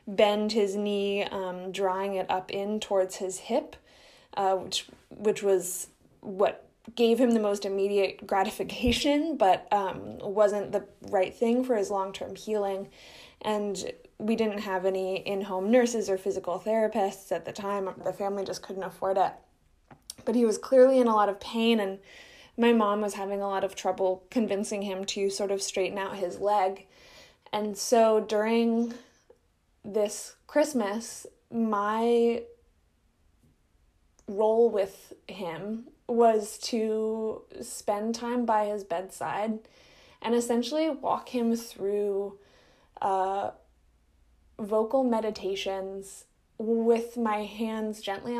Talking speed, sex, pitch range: 130 wpm, female, 195-225 Hz